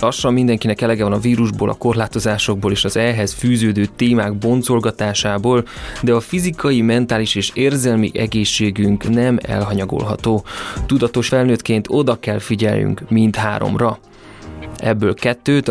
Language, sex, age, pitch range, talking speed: Hungarian, male, 20-39, 105-120 Hz, 120 wpm